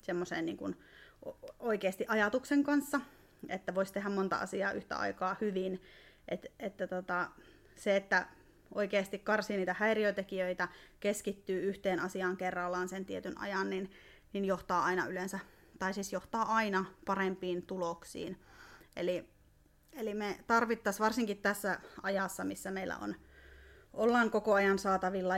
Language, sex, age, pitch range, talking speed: Finnish, female, 30-49, 185-205 Hz, 130 wpm